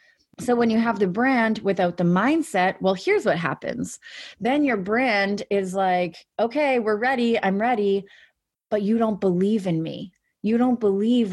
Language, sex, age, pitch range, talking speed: English, female, 20-39, 185-240 Hz, 170 wpm